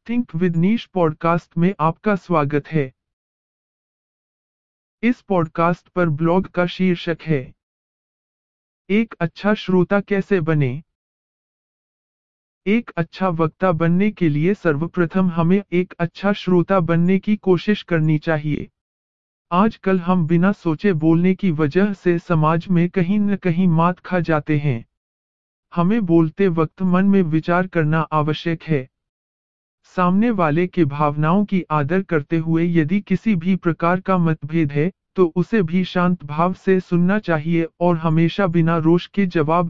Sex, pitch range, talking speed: male, 155-190 Hz, 140 wpm